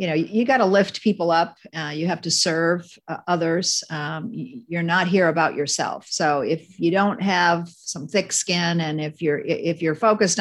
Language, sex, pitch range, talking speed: English, female, 160-195 Hz, 200 wpm